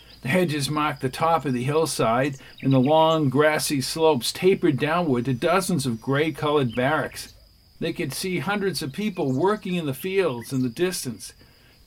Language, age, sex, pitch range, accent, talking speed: English, 50-69, male, 130-180 Hz, American, 165 wpm